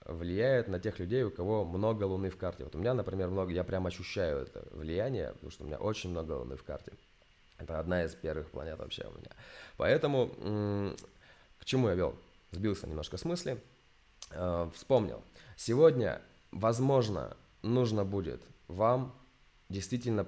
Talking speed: 155 wpm